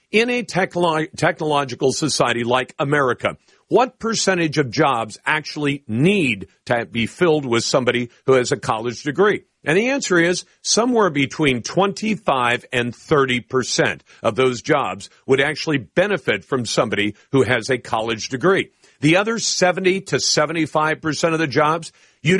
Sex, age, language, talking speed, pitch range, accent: male, 50-69, English, 150 wpm, 125-175 Hz, American